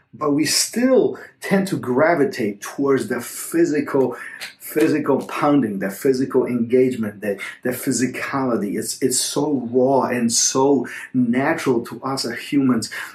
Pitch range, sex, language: 125-155 Hz, male, English